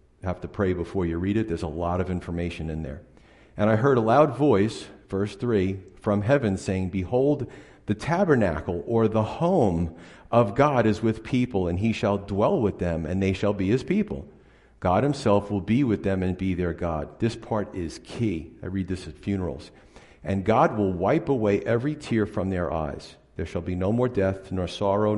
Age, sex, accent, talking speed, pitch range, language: 50-69, male, American, 205 wpm, 90-110 Hz, English